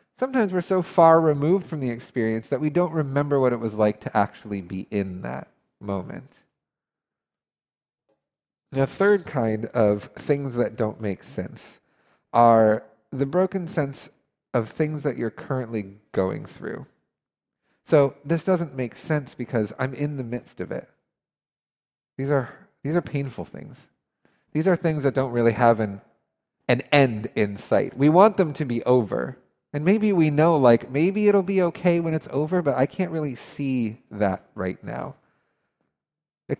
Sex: male